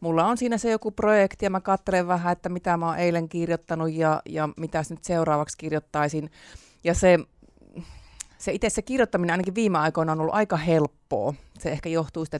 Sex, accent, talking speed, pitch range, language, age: female, native, 190 wpm, 150-175 Hz, Finnish, 30-49